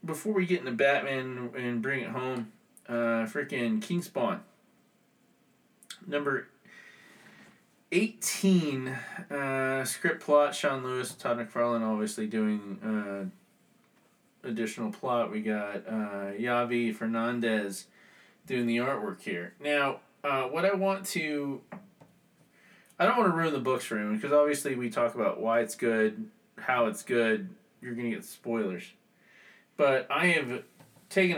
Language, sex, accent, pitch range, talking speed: English, male, American, 115-190 Hz, 135 wpm